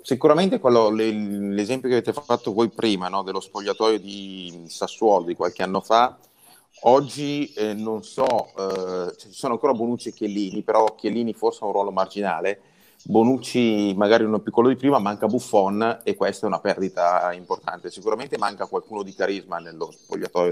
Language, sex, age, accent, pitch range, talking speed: Italian, male, 30-49, native, 95-120 Hz, 165 wpm